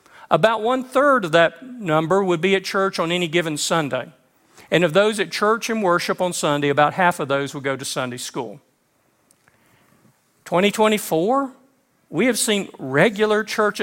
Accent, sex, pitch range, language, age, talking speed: American, male, 165-210 Hz, English, 50-69, 160 wpm